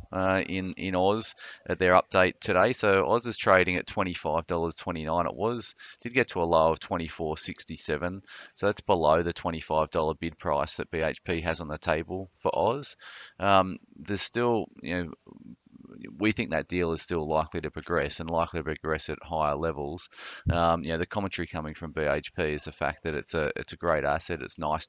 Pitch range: 75-85 Hz